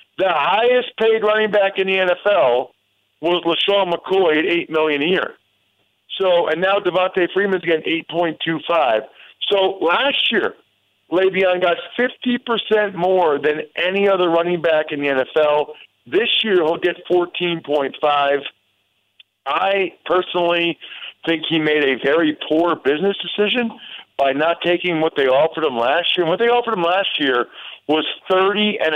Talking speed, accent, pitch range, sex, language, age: 160 wpm, American, 145-205 Hz, male, English, 50-69